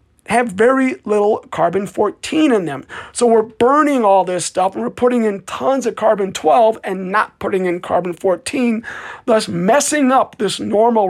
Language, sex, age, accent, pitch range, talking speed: English, male, 40-59, American, 180-235 Hz, 150 wpm